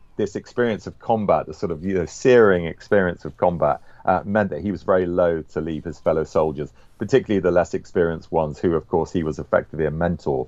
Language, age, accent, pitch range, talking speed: English, 40-59, British, 90-125 Hz, 205 wpm